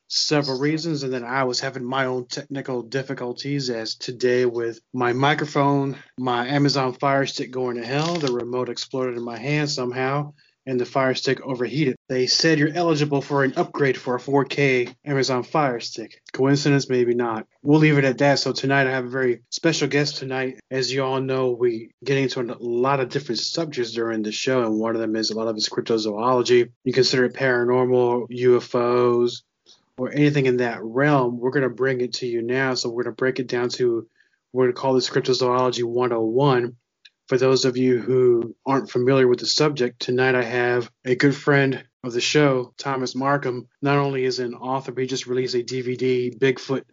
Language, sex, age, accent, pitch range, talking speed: English, male, 30-49, American, 125-140 Hz, 200 wpm